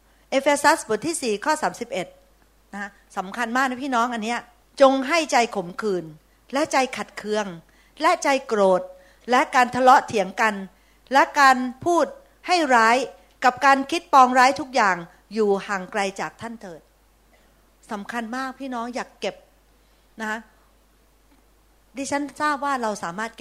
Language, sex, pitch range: Thai, female, 195-265 Hz